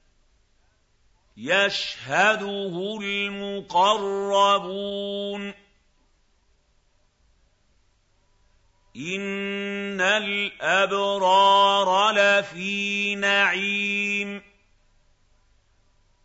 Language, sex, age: Arabic, male, 50-69